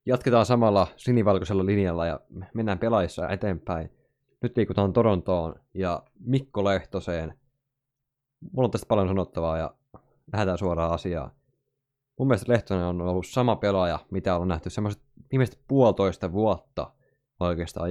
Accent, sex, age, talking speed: native, male, 20-39, 125 wpm